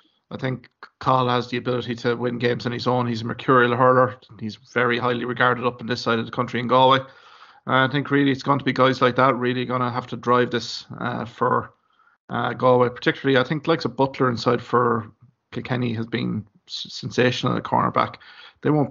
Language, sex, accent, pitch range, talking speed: English, male, Irish, 120-130 Hz, 215 wpm